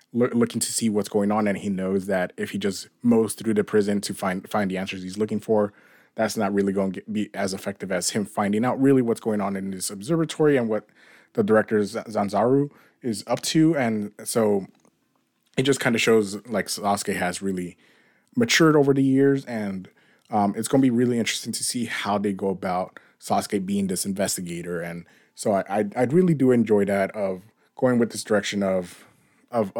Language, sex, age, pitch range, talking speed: English, male, 20-39, 100-125 Hz, 205 wpm